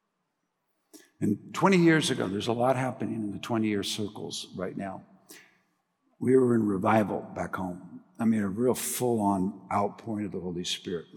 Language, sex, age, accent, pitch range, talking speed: English, male, 60-79, American, 105-140 Hz, 160 wpm